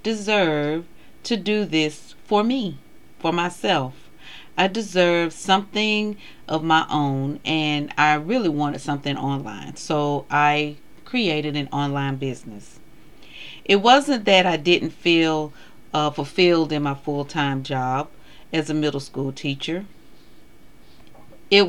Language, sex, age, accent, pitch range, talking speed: English, female, 40-59, American, 145-185 Hz, 120 wpm